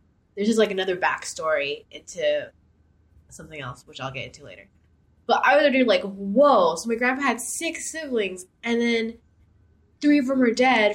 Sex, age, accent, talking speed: female, 10-29, American, 170 wpm